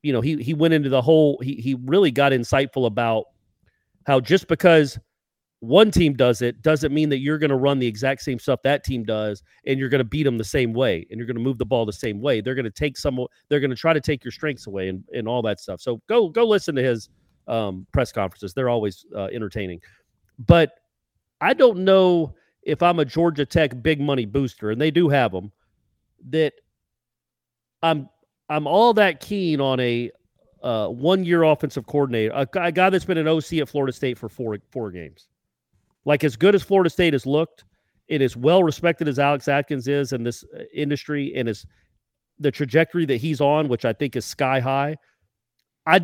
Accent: American